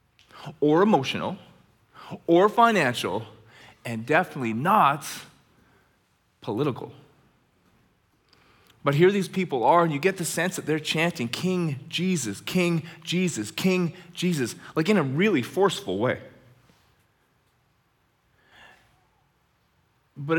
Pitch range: 120-170 Hz